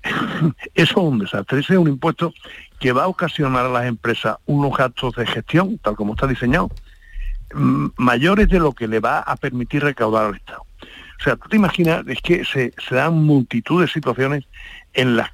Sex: male